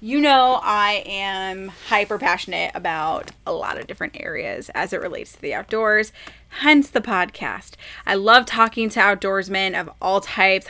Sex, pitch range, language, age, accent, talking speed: female, 195-250 Hz, English, 20-39, American, 155 wpm